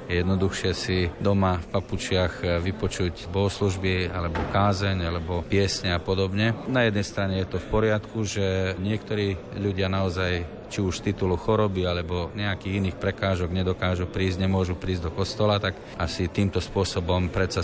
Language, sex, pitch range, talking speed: Slovak, male, 90-100 Hz, 145 wpm